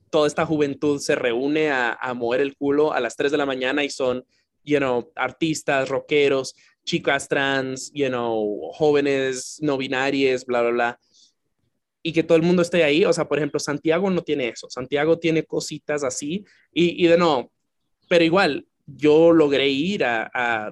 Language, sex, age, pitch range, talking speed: English, male, 20-39, 140-165 Hz, 180 wpm